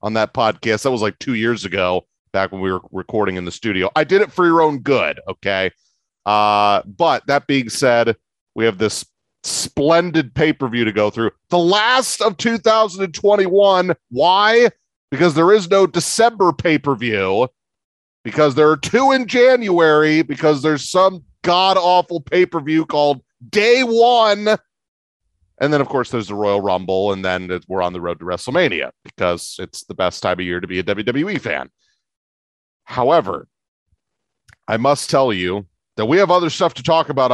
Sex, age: male, 30-49